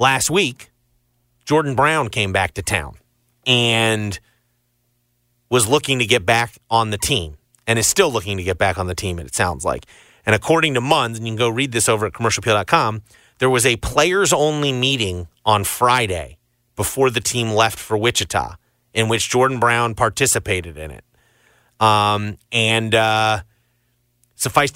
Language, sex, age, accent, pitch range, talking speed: English, male, 30-49, American, 105-125 Hz, 160 wpm